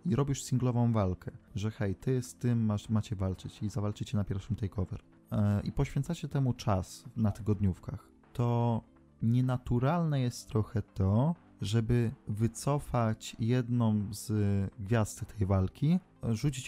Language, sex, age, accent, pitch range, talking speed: Polish, male, 20-39, native, 105-125 Hz, 125 wpm